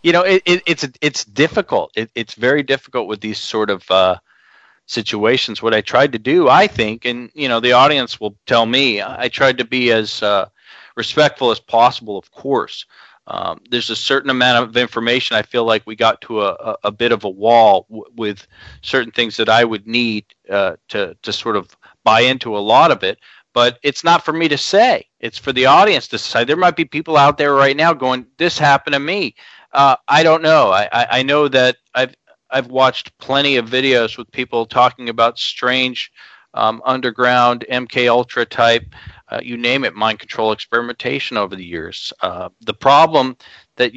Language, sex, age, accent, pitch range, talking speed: English, male, 40-59, American, 115-140 Hz, 200 wpm